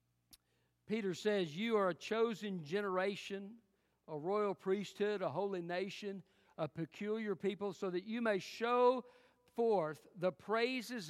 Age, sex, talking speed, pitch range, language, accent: 50-69, male, 130 wpm, 140-195 Hz, English, American